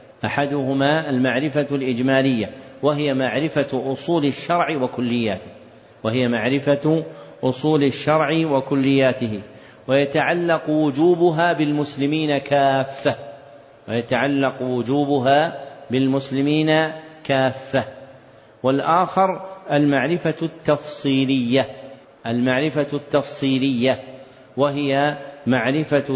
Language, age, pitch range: Arabic, 50-69, 130-150 Hz